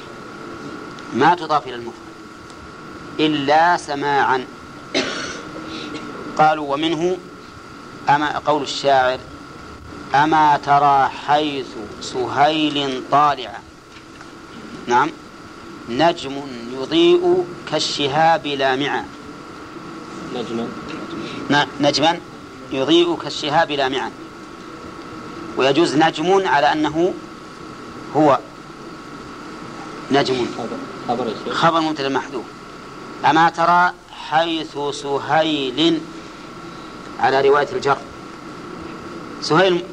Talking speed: 65 wpm